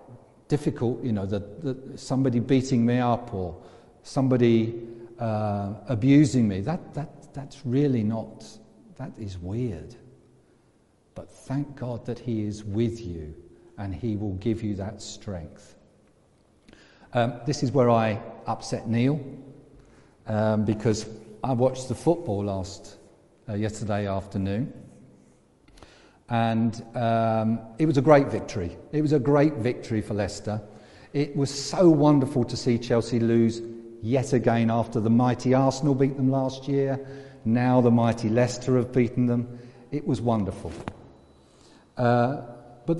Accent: British